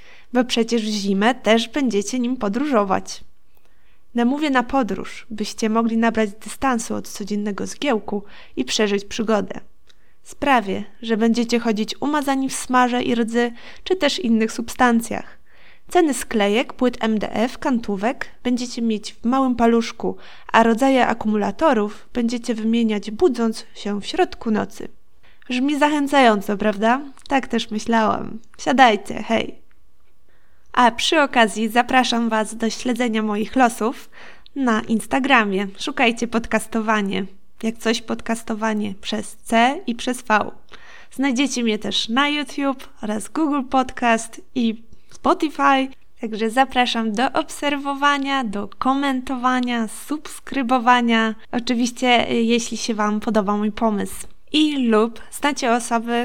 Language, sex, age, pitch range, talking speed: Polish, female, 20-39, 220-260 Hz, 120 wpm